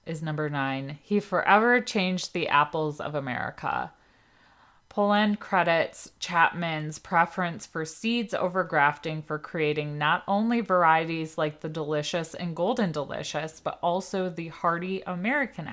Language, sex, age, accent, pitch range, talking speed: English, female, 30-49, American, 160-200 Hz, 130 wpm